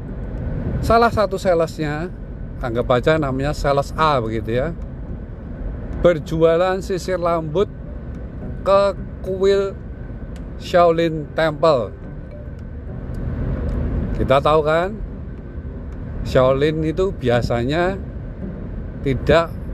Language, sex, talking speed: Indonesian, male, 75 wpm